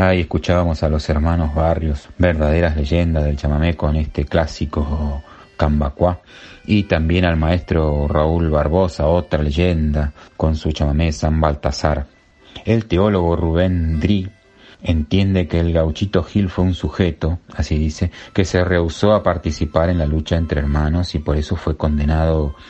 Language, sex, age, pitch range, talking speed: Spanish, male, 30-49, 75-90 Hz, 150 wpm